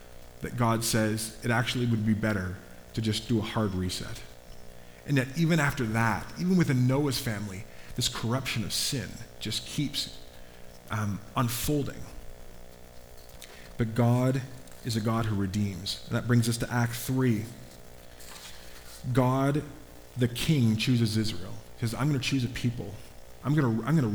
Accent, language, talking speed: American, English, 150 wpm